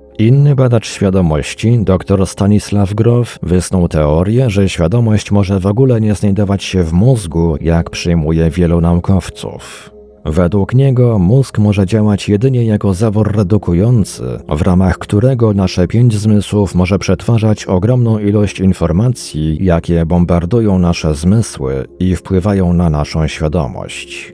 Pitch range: 85-110 Hz